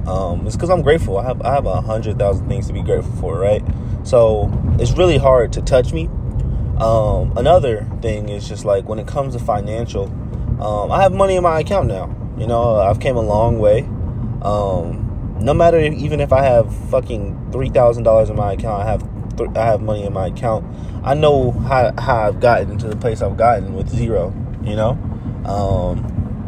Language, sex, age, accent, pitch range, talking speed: English, male, 20-39, American, 105-120 Hz, 200 wpm